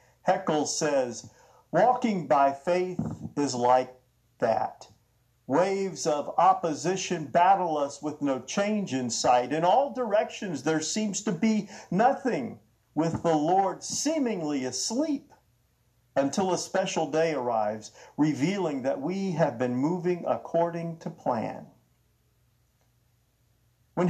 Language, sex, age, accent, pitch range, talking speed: English, male, 50-69, American, 130-180 Hz, 115 wpm